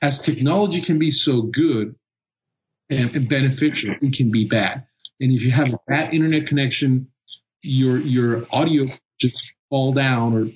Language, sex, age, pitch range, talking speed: English, male, 40-59, 110-140 Hz, 155 wpm